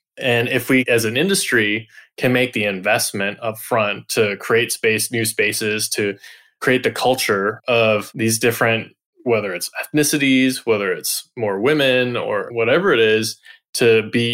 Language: English